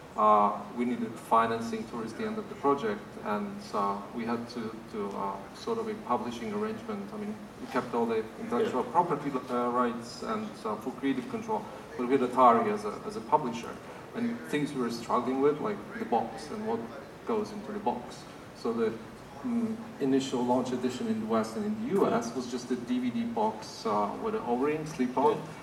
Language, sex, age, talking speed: English, male, 40-59, 200 wpm